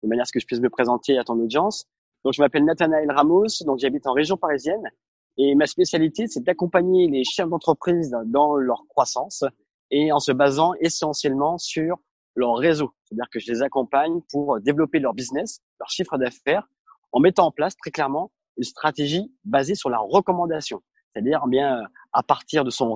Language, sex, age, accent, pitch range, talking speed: French, male, 20-39, French, 120-155 Hz, 185 wpm